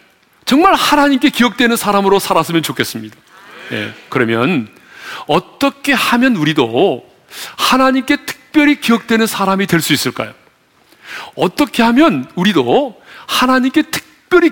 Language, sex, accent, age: Korean, male, native, 40-59